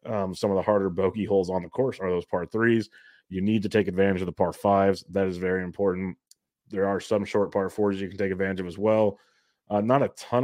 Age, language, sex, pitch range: 30-49, English, male, 95-105 Hz